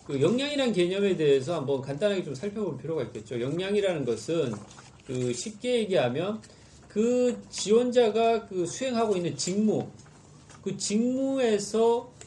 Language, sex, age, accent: Korean, male, 40-59, native